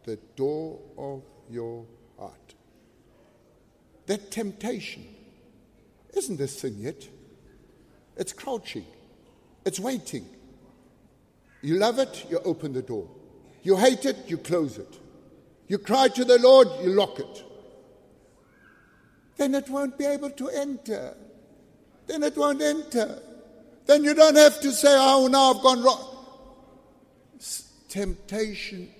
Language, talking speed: English, 120 wpm